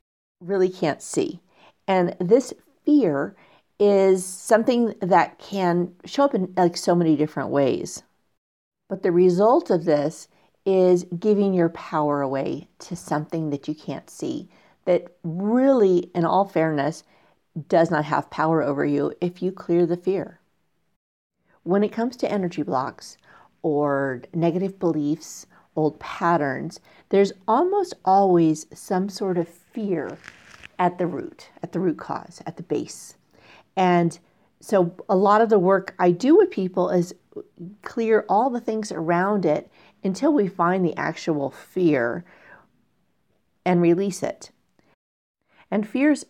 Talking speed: 140 wpm